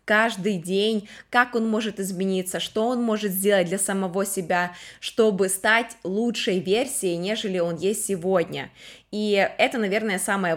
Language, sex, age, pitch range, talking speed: Ukrainian, female, 20-39, 190-240 Hz, 140 wpm